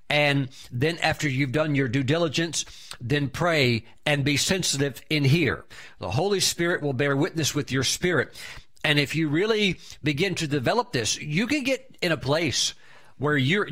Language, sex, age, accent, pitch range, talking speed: English, male, 50-69, American, 130-165 Hz, 175 wpm